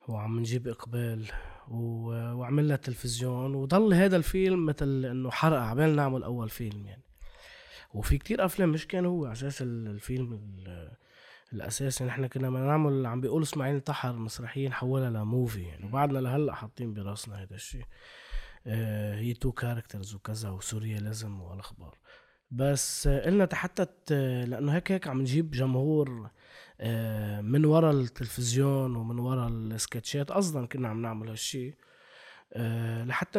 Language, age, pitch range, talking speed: Arabic, 20-39, 115-145 Hz, 130 wpm